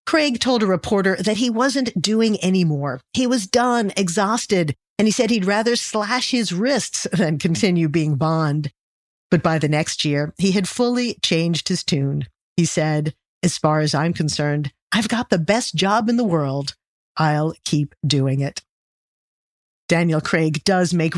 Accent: American